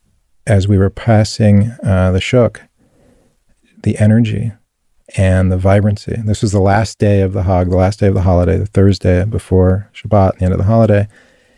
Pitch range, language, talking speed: 95-115 Hz, English, 180 wpm